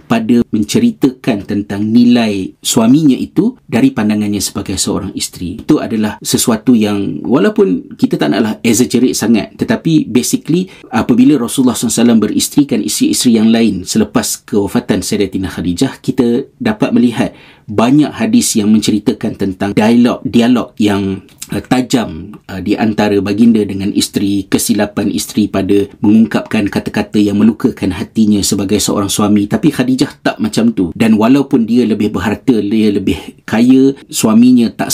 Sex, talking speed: male, 130 wpm